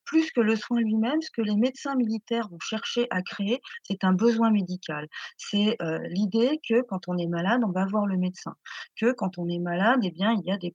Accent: French